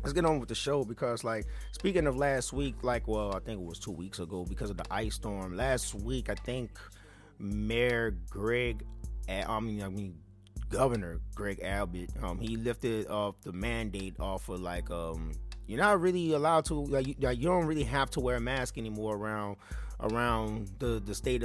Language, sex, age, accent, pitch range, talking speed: English, male, 30-49, American, 100-130 Hz, 200 wpm